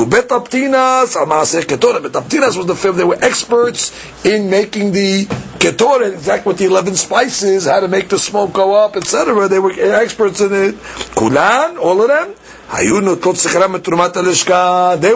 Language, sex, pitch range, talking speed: English, male, 180-230 Hz, 135 wpm